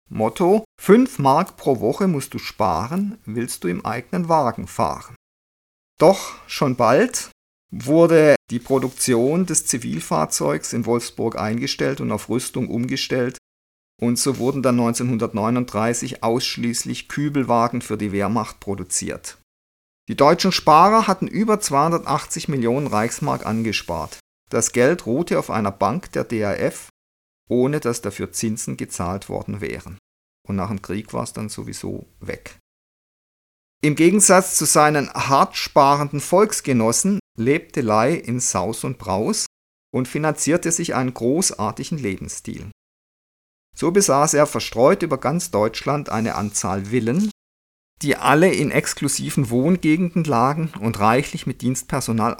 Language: German